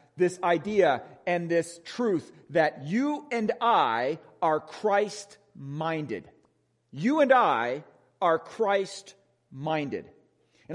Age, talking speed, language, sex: 40-59, 95 wpm, English, male